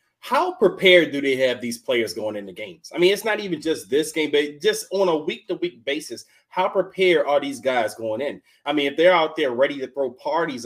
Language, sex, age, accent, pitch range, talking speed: English, male, 30-49, American, 125-180 Hz, 230 wpm